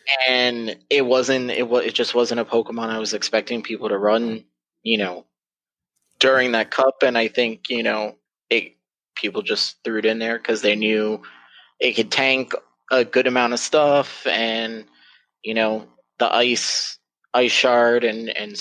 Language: English